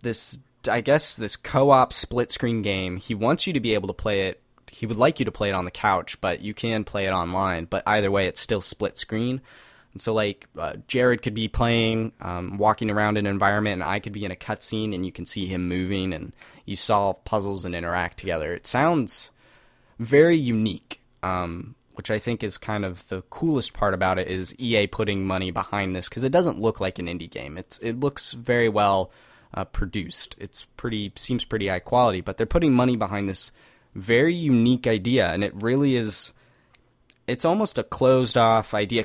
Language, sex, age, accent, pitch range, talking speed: English, male, 10-29, American, 95-120 Hz, 205 wpm